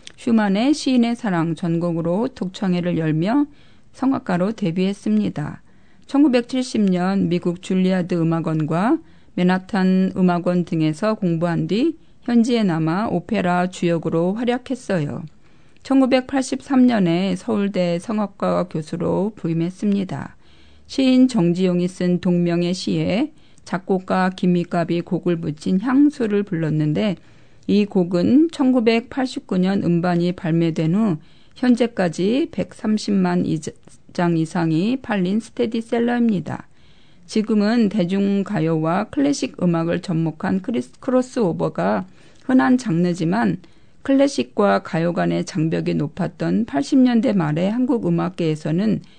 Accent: native